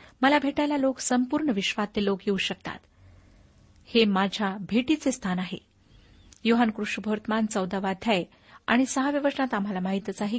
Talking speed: 125 wpm